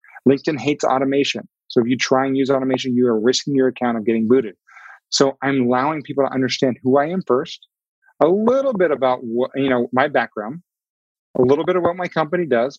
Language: English